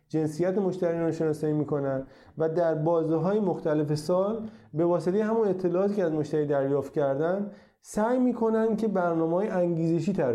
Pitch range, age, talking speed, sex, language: 150-200 Hz, 30-49, 160 wpm, male, Persian